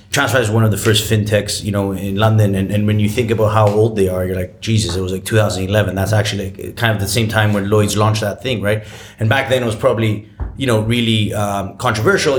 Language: English